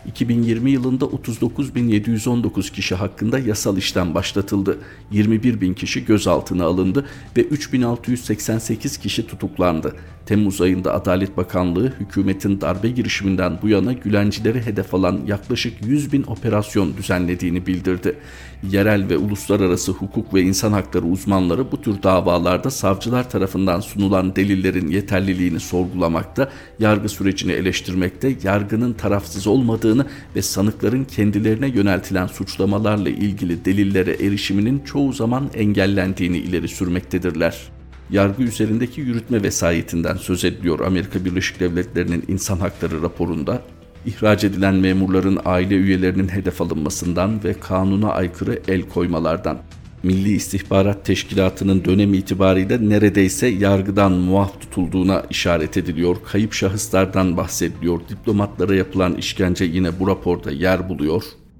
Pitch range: 90-105 Hz